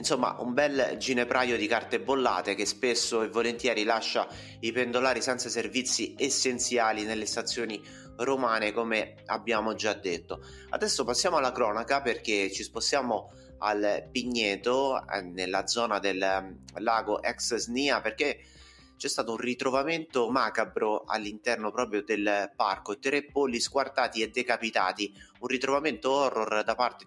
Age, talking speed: 30-49, 130 wpm